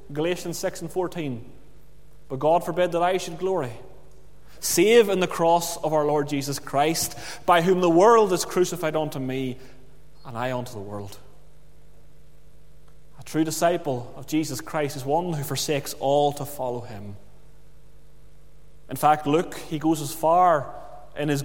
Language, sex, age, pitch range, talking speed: English, male, 30-49, 145-190 Hz, 155 wpm